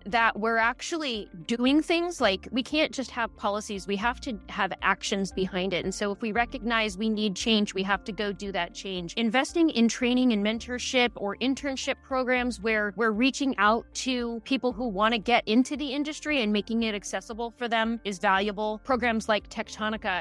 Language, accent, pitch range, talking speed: English, American, 200-245 Hz, 195 wpm